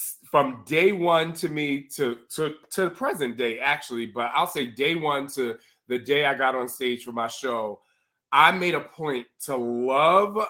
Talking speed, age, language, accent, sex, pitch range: 190 wpm, 20-39, English, American, male, 135-155 Hz